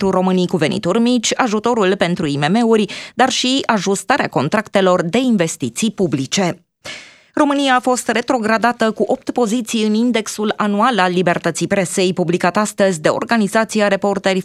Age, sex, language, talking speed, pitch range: 20-39, female, Romanian, 135 wpm, 195-235 Hz